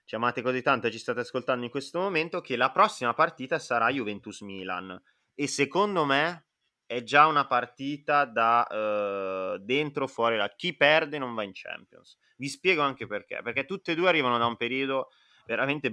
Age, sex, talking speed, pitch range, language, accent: 30-49, male, 175 wpm, 110-140 Hz, Italian, native